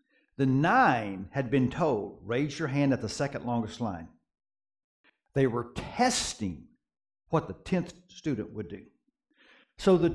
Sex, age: male, 60-79